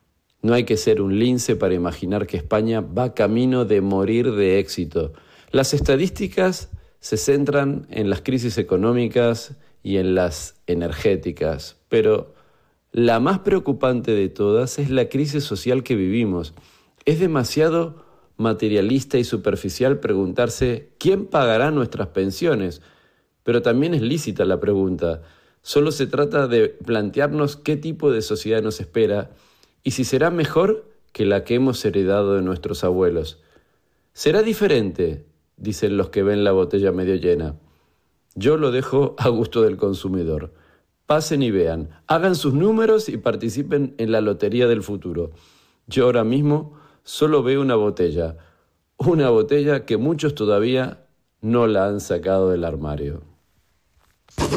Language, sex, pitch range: Spanish, male, 95-135 Hz